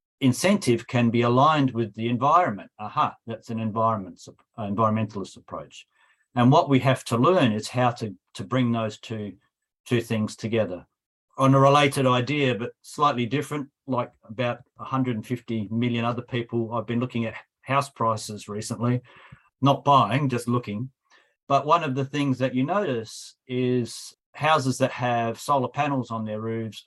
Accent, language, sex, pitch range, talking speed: Australian, English, male, 115-130 Hz, 155 wpm